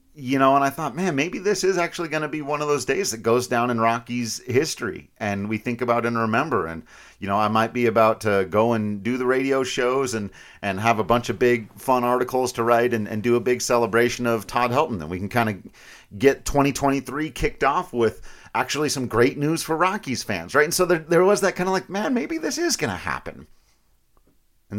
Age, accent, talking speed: 40-59, American, 235 wpm